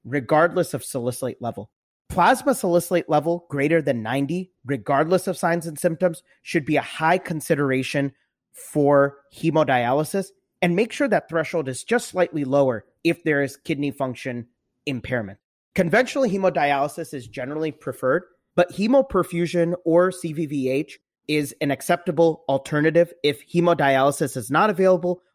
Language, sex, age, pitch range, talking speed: English, male, 30-49, 130-175 Hz, 130 wpm